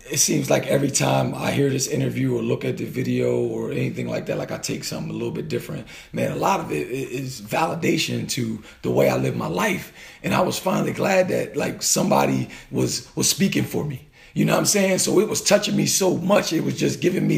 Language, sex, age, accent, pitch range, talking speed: English, male, 40-59, American, 165-225 Hz, 240 wpm